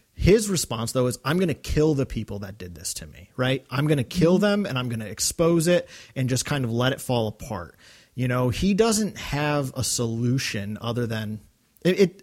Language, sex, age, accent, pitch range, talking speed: English, male, 30-49, American, 120-165 Hz, 220 wpm